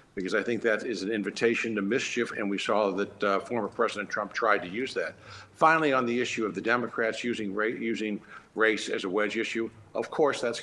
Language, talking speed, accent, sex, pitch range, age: English, 215 wpm, American, male, 100-115 Hz, 60-79